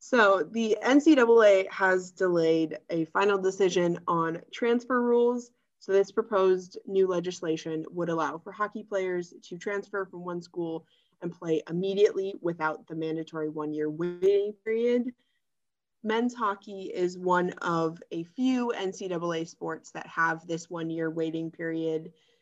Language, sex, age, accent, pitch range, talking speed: English, female, 20-39, American, 160-195 Hz, 140 wpm